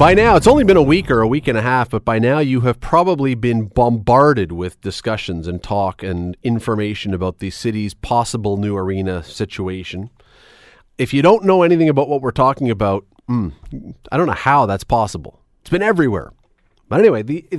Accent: American